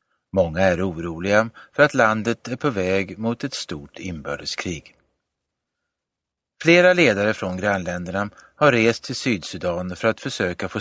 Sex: male